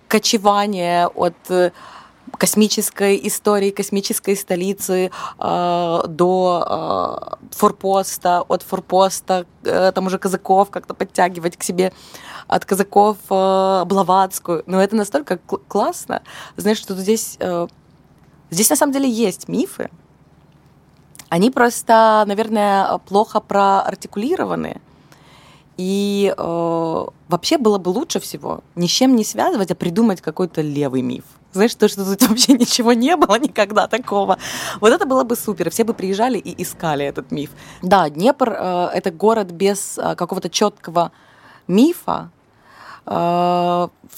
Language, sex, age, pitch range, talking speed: Ukrainian, female, 20-39, 175-215 Hz, 125 wpm